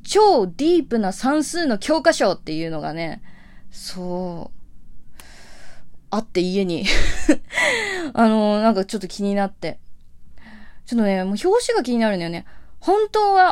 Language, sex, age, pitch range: Japanese, female, 20-39, 180-275 Hz